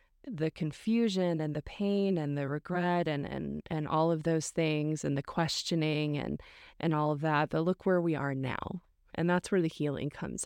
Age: 20-39